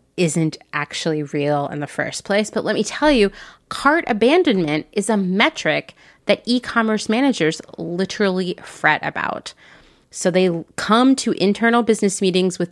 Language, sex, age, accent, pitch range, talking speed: English, female, 30-49, American, 165-230 Hz, 145 wpm